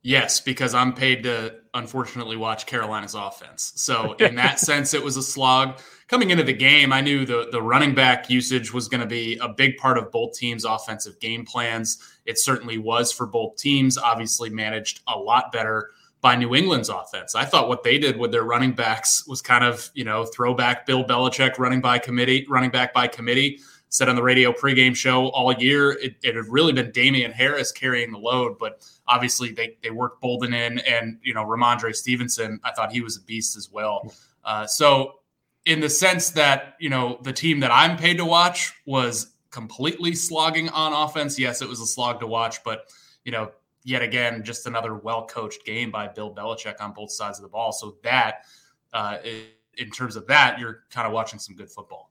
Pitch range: 115-130 Hz